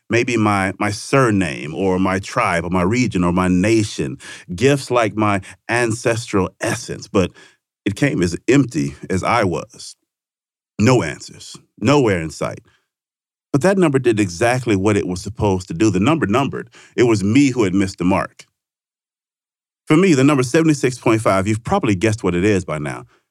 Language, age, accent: English, 40-59, American